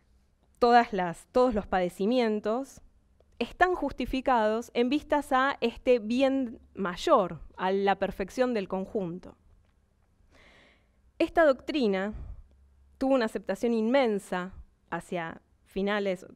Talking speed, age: 95 wpm, 20-39